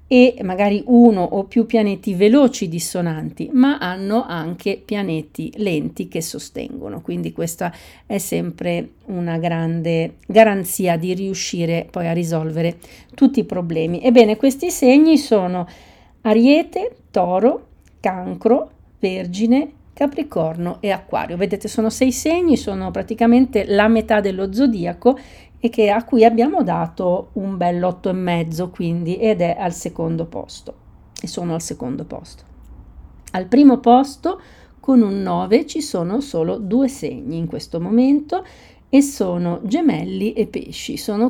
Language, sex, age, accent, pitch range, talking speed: Italian, female, 50-69, native, 170-230 Hz, 130 wpm